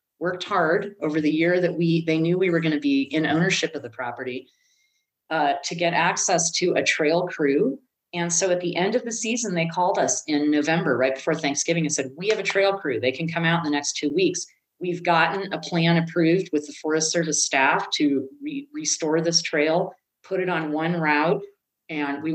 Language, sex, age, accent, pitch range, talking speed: English, female, 30-49, American, 150-180 Hz, 215 wpm